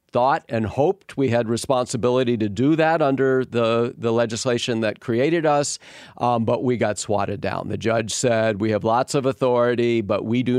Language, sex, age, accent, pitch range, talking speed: English, male, 50-69, American, 105-130 Hz, 185 wpm